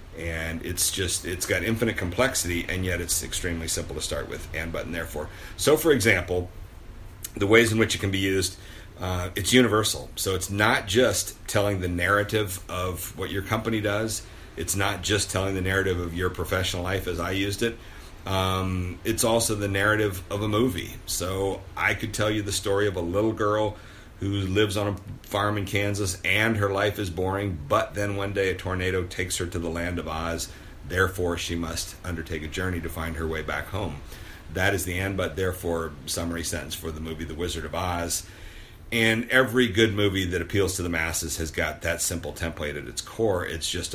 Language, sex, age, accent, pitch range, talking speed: English, male, 40-59, American, 85-100 Hz, 200 wpm